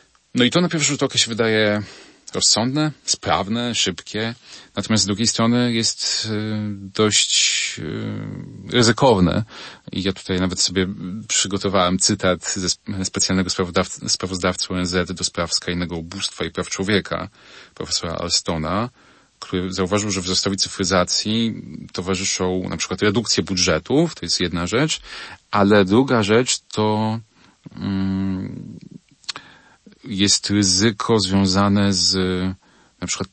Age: 30-49